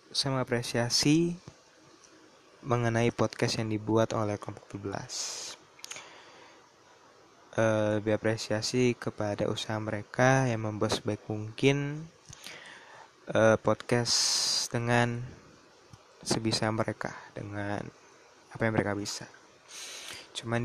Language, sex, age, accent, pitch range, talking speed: Indonesian, male, 20-39, native, 110-120 Hz, 85 wpm